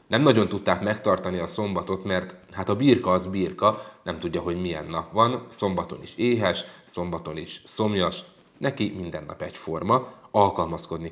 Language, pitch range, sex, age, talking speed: Hungarian, 90-120 Hz, male, 30-49, 160 wpm